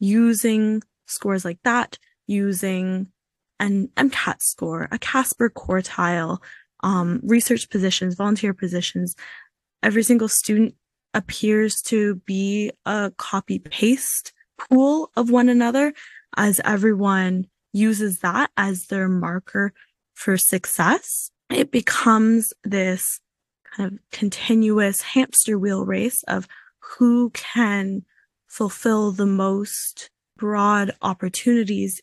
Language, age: English, 10-29